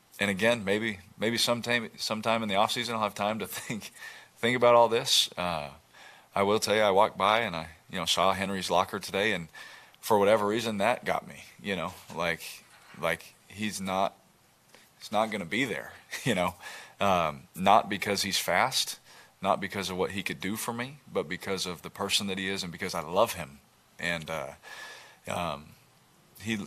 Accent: American